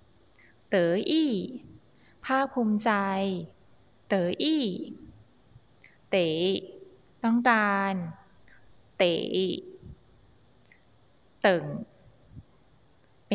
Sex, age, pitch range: female, 20-39, 170-255 Hz